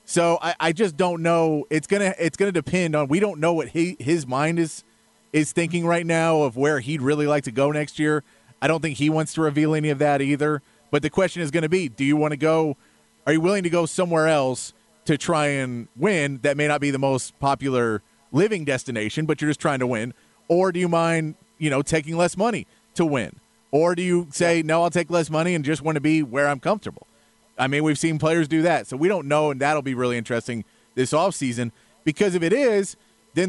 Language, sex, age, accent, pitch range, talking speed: English, male, 30-49, American, 135-165 Hz, 240 wpm